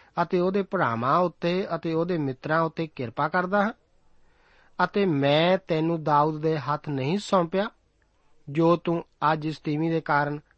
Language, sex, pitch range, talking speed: Punjabi, male, 135-170 Hz, 145 wpm